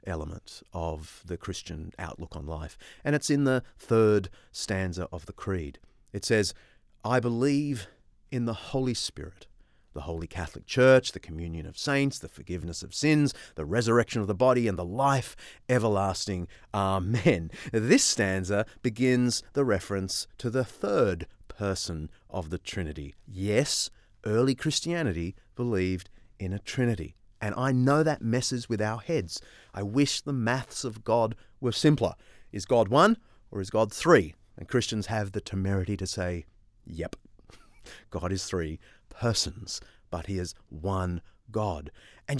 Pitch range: 95-130 Hz